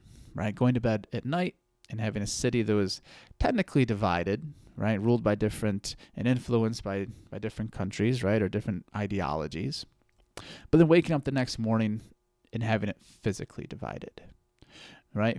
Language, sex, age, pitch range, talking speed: English, male, 30-49, 100-120 Hz, 160 wpm